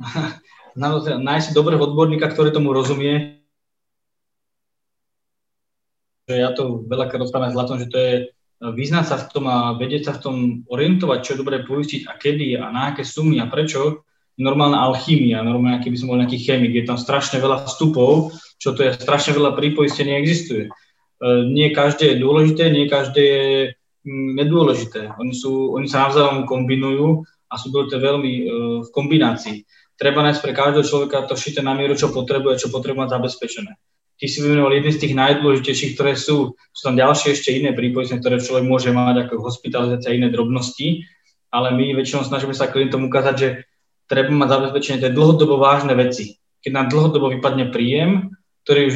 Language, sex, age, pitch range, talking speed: Slovak, male, 20-39, 130-150 Hz, 170 wpm